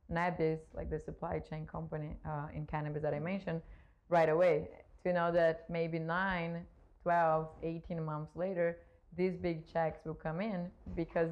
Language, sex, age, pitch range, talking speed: English, female, 20-39, 155-180 Hz, 160 wpm